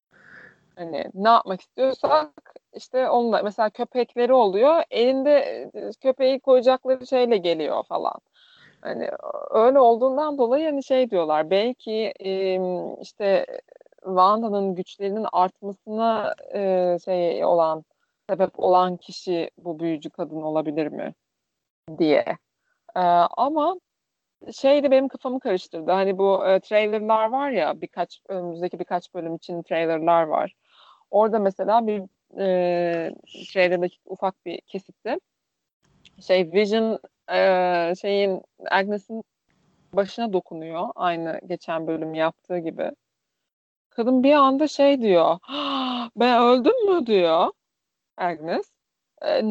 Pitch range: 180-260 Hz